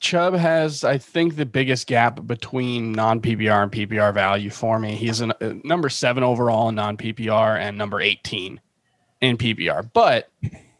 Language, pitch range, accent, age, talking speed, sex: English, 115-145 Hz, American, 20-39, 165 wpm, male